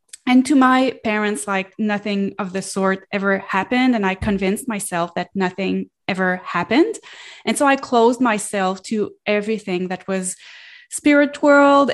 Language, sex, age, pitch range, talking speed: English, female, 20-39, 200-240 Hz, 150 wpm